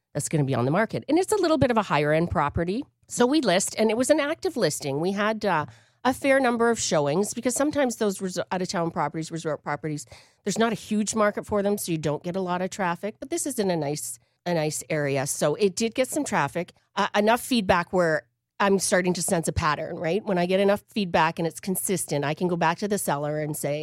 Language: English